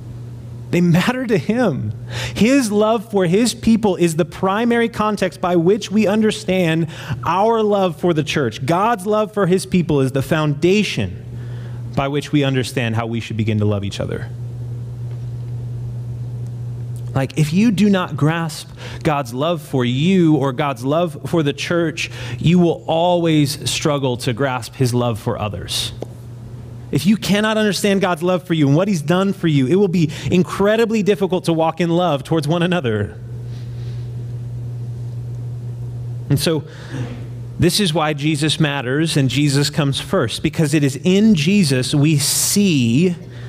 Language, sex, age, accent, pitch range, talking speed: English, male, 30-49, American, 120-180 Hz, 155 wpm